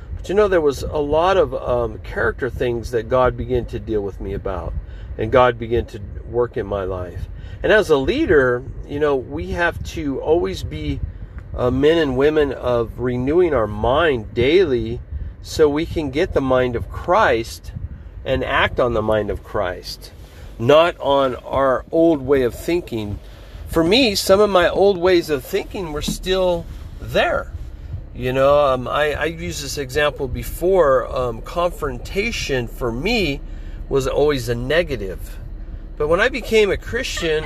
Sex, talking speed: male, 165 wpm